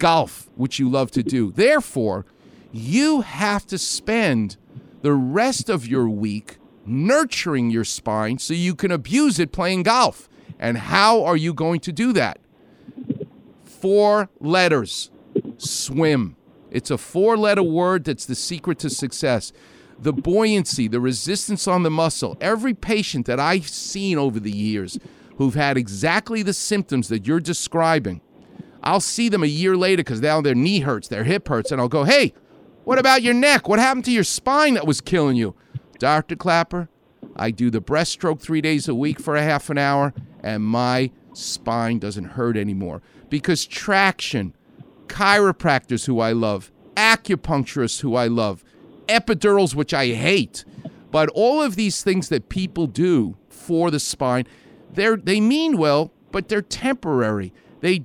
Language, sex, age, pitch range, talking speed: English, male, 50-69, 125-200 Hz, 160 wpm